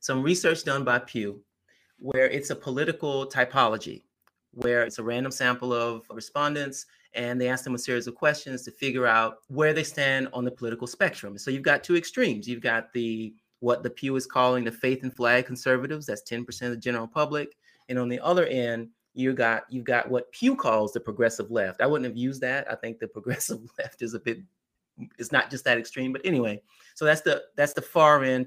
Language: English